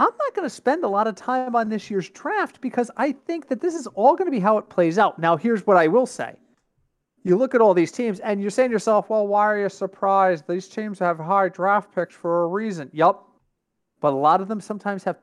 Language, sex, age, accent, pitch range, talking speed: English, male, 30-49, American, 155-210 Hz, 260 wpm